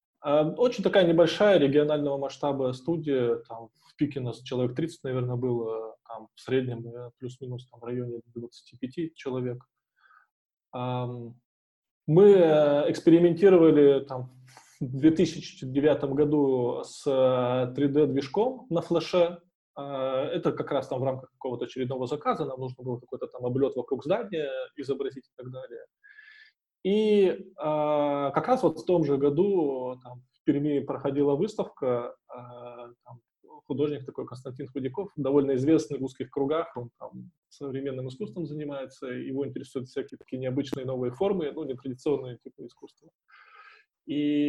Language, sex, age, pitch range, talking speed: Russian, male, 20-39, 130-165 Hz, 130 wpm